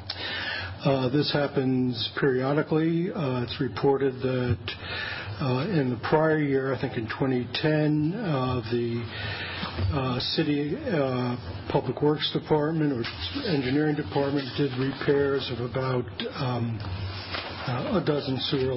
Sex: male